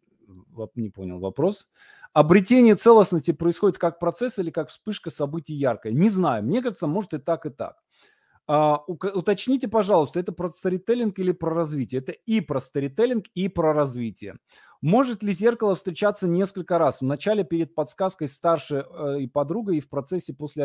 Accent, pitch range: native, 140-200 Hz